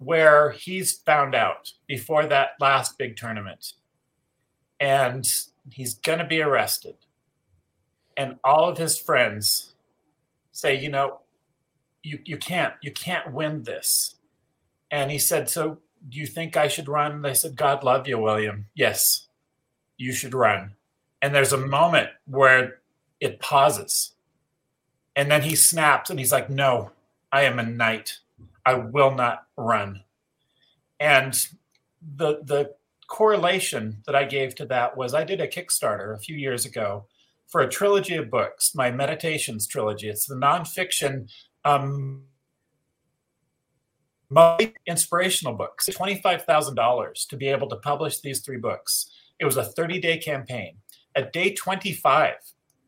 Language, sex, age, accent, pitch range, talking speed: English, male, 40-59, American, 130-160 Hz, 140 wpm